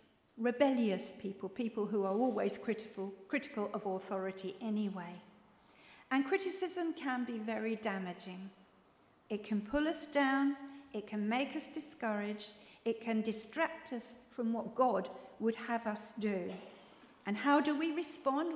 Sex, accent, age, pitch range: female, British, 50-69, 215-280 Hz